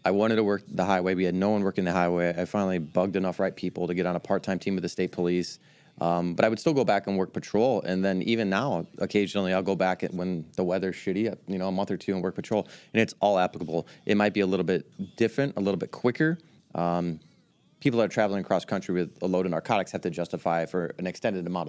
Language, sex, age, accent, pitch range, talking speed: English, male, 30-49, American, 90-100 Hz, 260 wpm